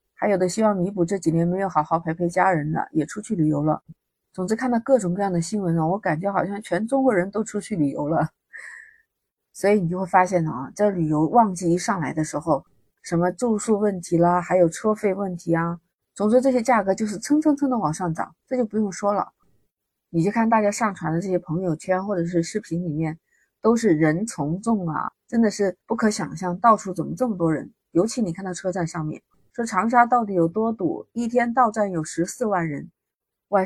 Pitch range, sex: 170-220 Hz, female